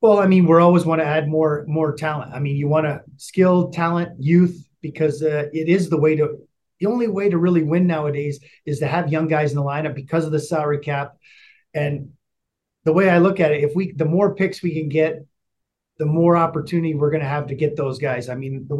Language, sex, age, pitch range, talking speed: English, male, 30-49, 145-175 Hz, 235 wpm